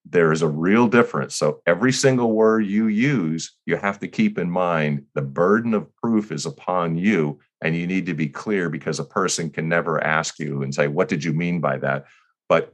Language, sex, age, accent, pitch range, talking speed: English, male, 40-59, American, 80-110 Hz, 215 wpm